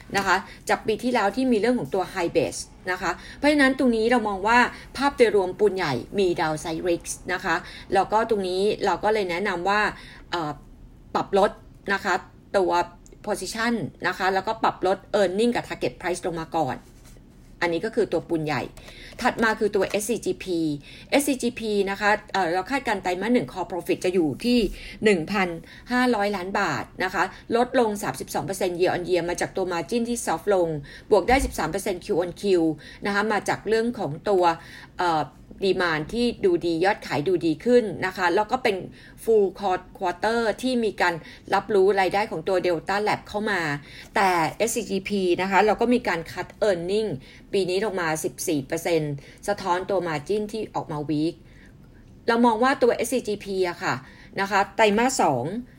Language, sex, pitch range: Thai, female, 175-220 Hz